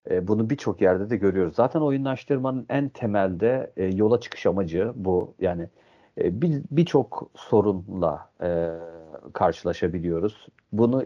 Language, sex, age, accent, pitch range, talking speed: Turkish, male, 50-69, native, 95-130 Hz, 100 wpm